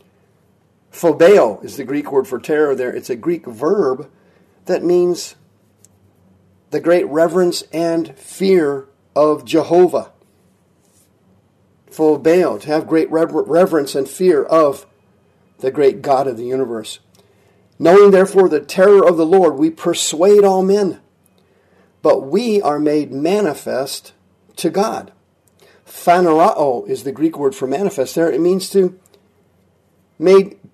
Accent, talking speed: American, 130 wpm